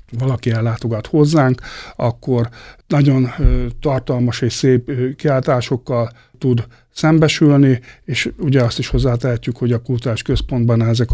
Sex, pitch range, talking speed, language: male, 120-150 Hz, 115 wpm, Hungarian